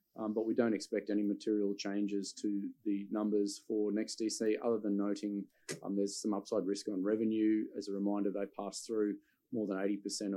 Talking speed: 190 wpm